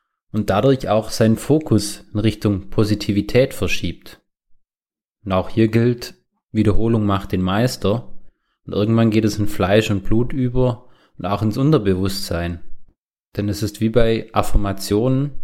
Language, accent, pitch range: German, German, 100-120 Hz